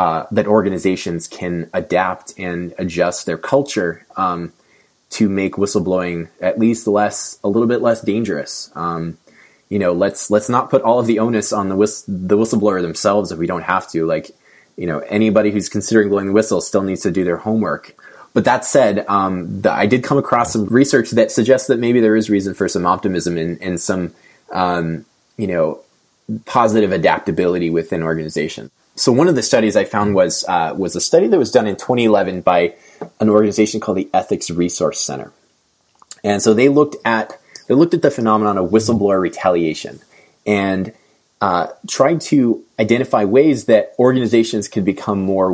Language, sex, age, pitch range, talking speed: English, male, 20-39, 90-110 Hz, 185 wpm